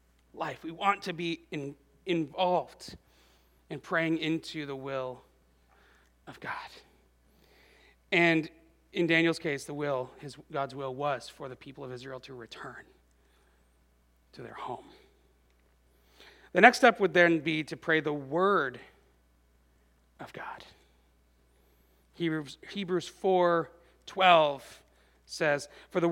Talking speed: 120 wpm